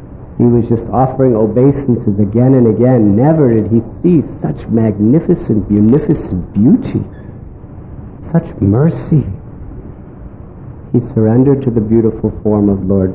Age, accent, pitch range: 50-69, American, 110-155 Hz